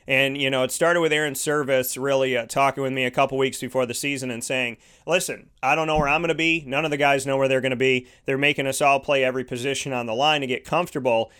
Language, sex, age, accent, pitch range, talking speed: English, male, 30-49, American, 125-145 Hz, 280 wpm